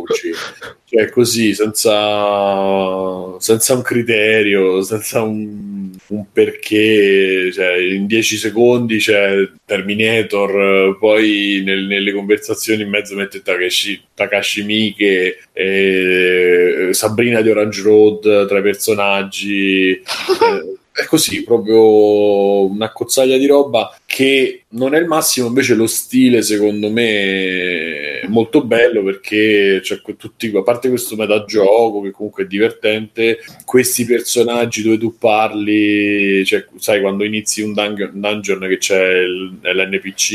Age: 20-39